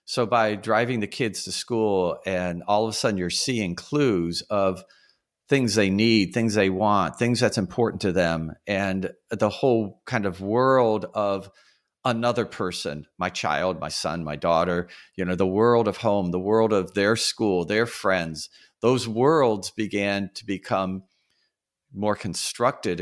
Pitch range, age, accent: 95-120 Hz, 50-69, American